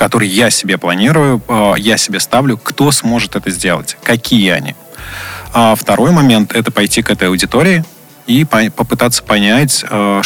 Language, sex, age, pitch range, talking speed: Russian, male, 20-39, 105-130 Hz, 135 wpm